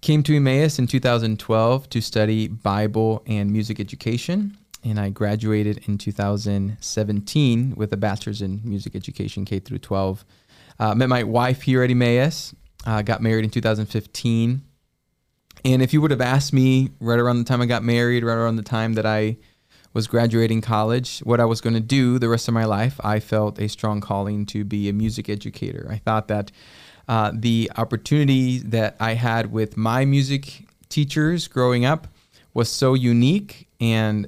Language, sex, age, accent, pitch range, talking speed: English, male, 20-39, American, 110-130 Hz, 170 wpm